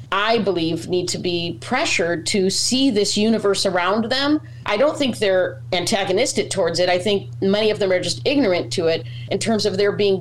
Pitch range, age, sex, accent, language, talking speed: 155-200 Hz, 40-59, female, American, English, 200 wpm